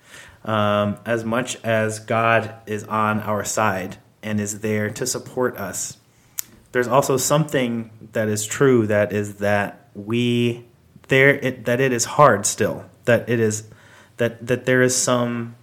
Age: 30-49